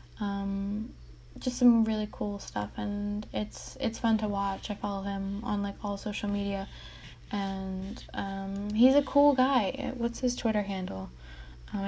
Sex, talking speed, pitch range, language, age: female, 155 wpm, 190-225 Hz, English, 10-29